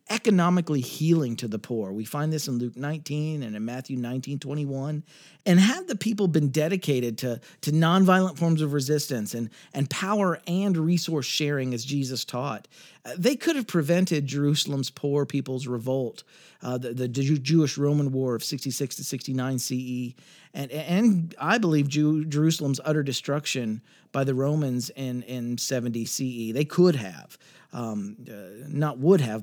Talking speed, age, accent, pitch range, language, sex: 155 wpm, 40-59, American, 130-170 Hz, English, male